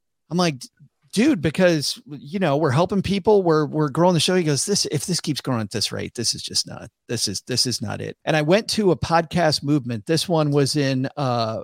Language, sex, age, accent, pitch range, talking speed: English, male, 40-59, American, 130-170 Hz, 235 wpm